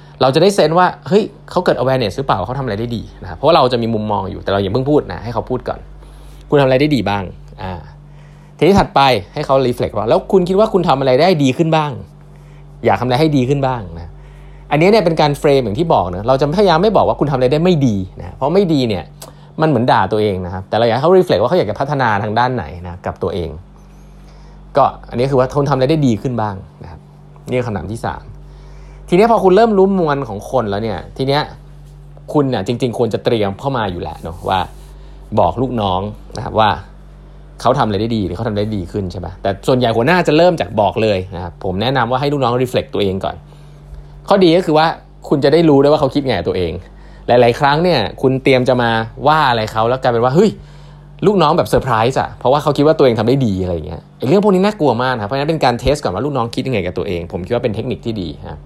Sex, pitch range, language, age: male, 105-150 Hz, English, 20-39